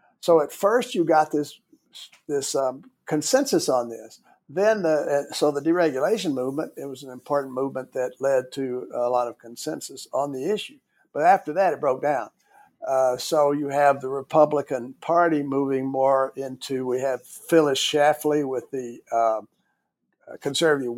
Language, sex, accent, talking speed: English, male, American, 160 wpm